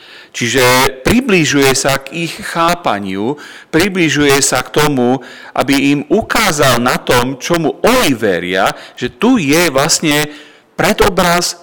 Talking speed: 120 wpm